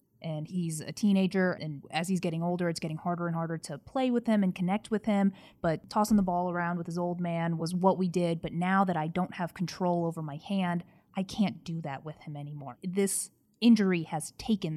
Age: 20-39